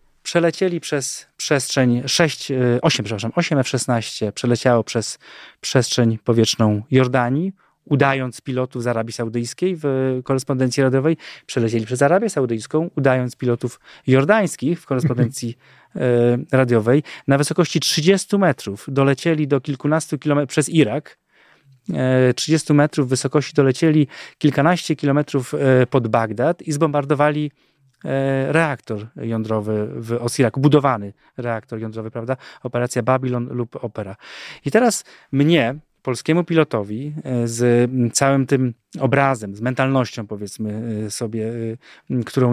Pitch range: 115-145 Hz